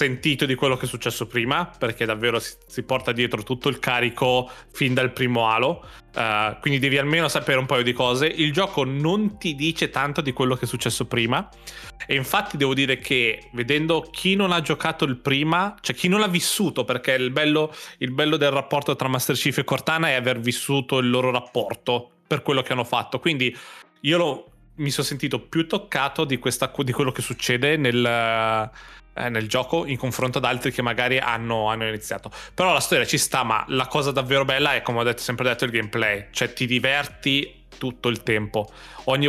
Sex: male